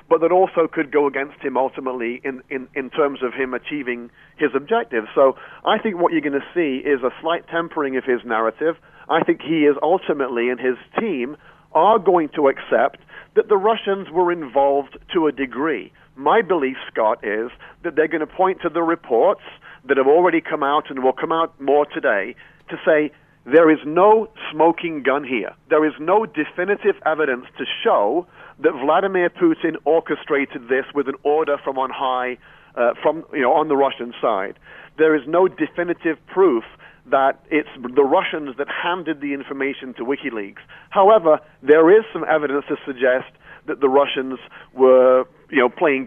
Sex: male